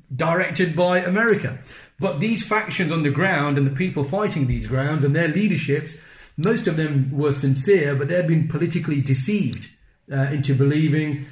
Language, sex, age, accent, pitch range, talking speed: English, male, 40-59, British, 140-165 Hz, 170 wpm